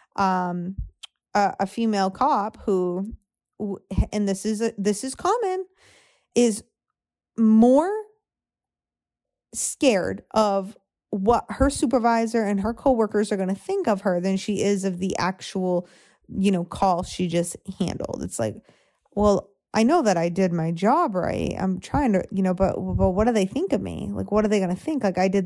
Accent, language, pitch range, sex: American, English, 180-215 Hz, female